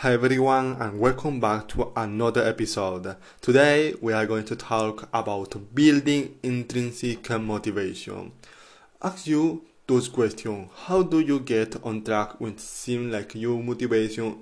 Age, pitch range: 20-39, 110-140 Hz